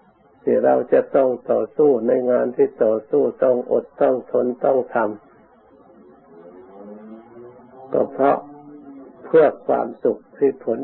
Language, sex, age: Thai, male, 60-79